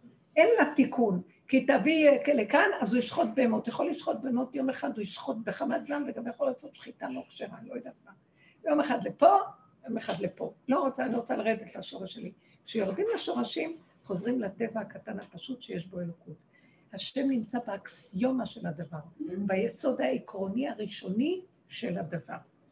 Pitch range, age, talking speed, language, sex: 225-300 Hz, 60-79, 165 wpm, Hebrew, female